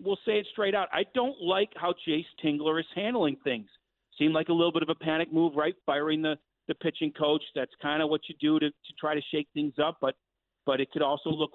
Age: 50-69